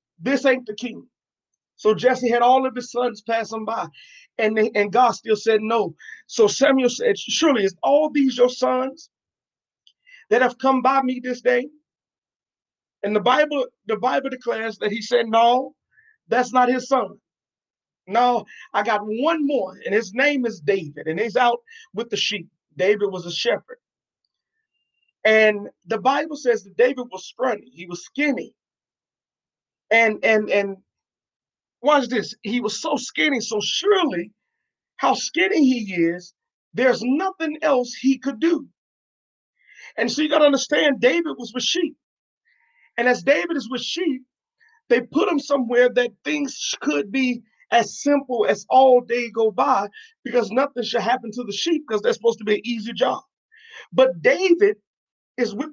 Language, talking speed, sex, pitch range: English, 165 wpm, male, 220-290 Hz